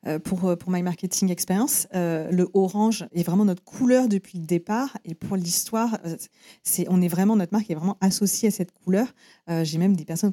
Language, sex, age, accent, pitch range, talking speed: French, female, 40-59, French, 180-225 Hz, 210 wpm